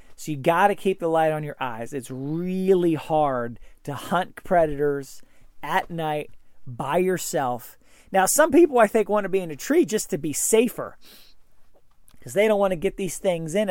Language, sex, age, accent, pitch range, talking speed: English, male, 40-59, American, 140-195 Hz, 190 wpm